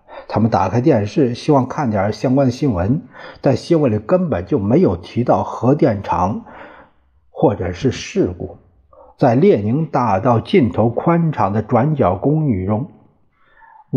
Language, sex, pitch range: Chinese, male, 105-150 Hz